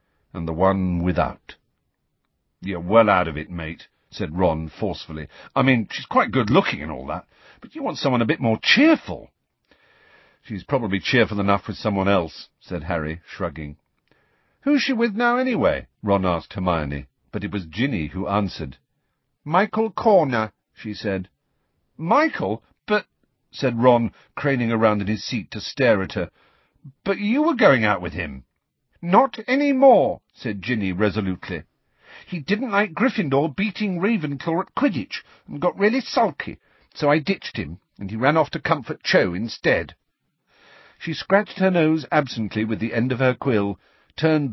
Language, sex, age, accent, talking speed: English, male, 50-69, British, 160 wpm